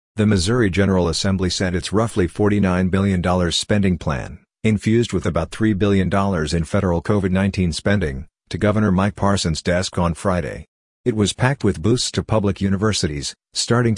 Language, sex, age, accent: English, male, 50-69, American